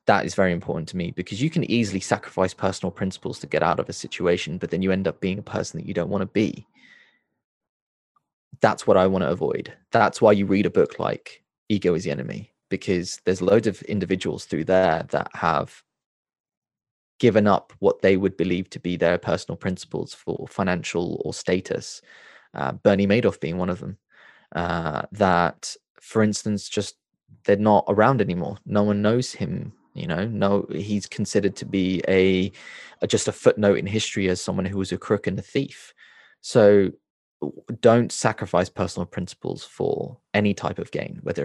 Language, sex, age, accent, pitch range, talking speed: English, male, 20-39, British, 95-105 Hz, 185 wpm